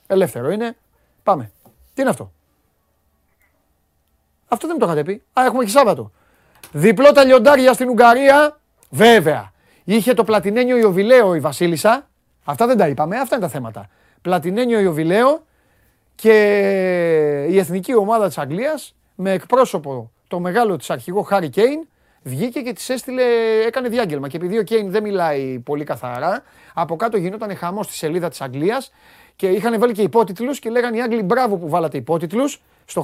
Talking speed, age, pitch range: 155 wpm, 30-49, 175-235 Hz